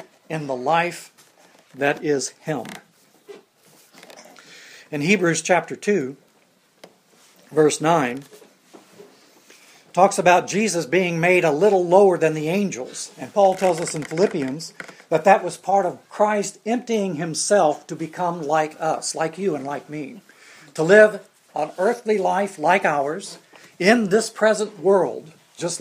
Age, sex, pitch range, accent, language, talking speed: 60-79, male, 165-200 Hz, American, English, 135 wpm